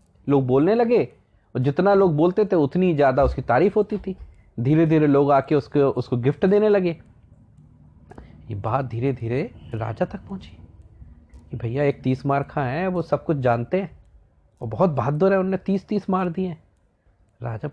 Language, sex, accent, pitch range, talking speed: Hindi, male, native, 115-165 Hz, 175 wpm